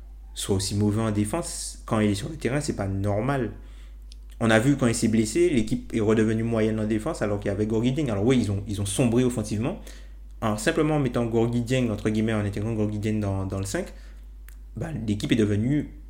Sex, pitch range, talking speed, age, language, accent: male, 105-120 Hz, 210 wpm, 30-49, French, French